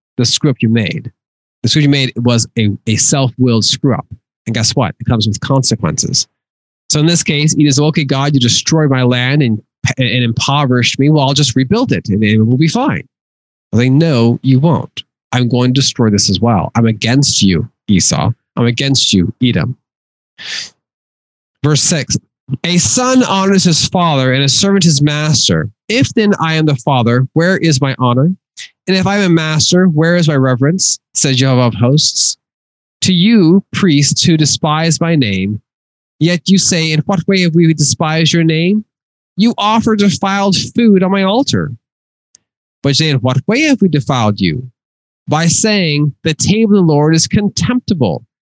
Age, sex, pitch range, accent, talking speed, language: 20-39, male, 125-175 Hz, American, 180 wpm, English